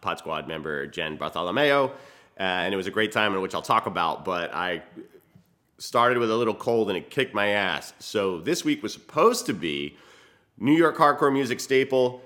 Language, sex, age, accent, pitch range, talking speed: English, male, 30-49, American, 95-120 Hz, 195 wpm